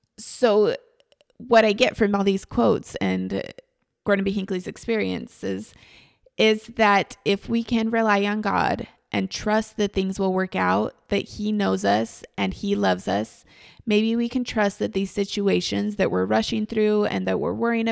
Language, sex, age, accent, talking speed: English, female, 20-39, American, 170 wpm